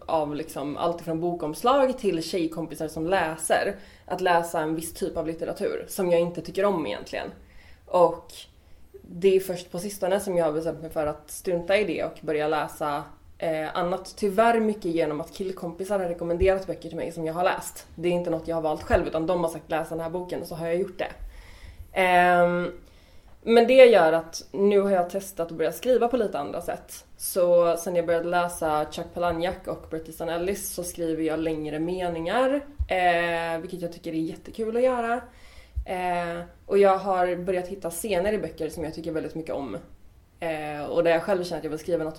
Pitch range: 160-190 Hz